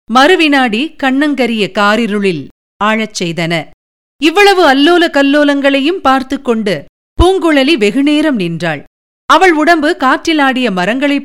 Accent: native